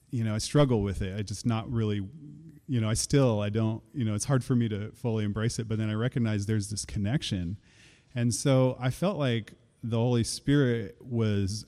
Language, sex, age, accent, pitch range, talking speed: English, male, 30-49, American, 105-125 Hz, 215 wpm